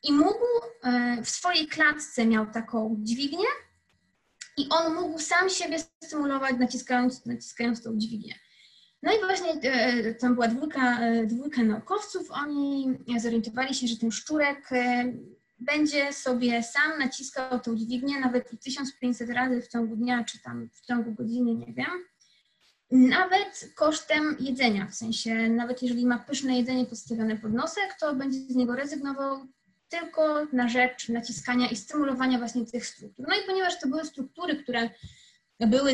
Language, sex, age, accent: Polish, female, 20-39, native